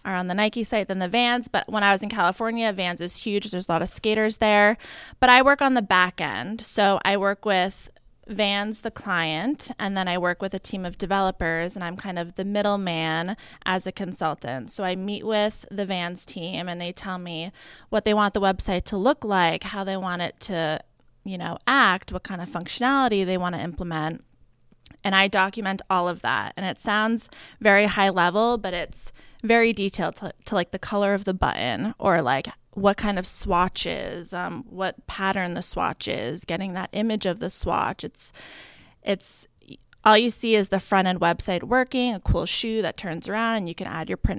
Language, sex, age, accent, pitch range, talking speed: English, female, 20-39, American, 180-220 Hz, 210 wpm